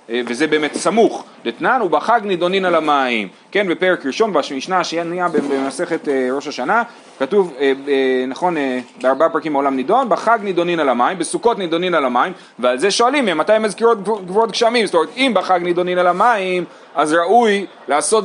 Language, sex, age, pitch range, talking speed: Hebrew, male, 30-49, 165-230 Hz, 160 wpm